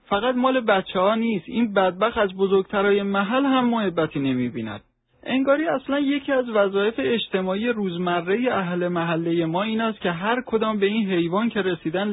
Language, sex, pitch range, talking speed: Persian, male, 170-225 Hz, 170 wpm